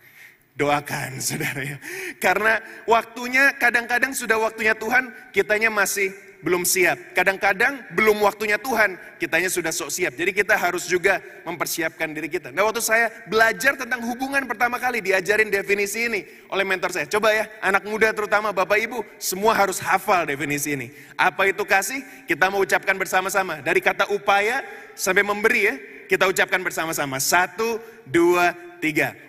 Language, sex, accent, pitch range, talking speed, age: Indonesian, male, native, 175-230 Hz, 150 wpm, 20-39